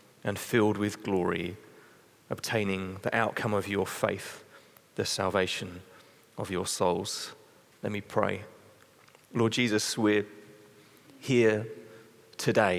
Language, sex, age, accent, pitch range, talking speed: English, male, 30-49, British, 95-110 Hz, 110 wpm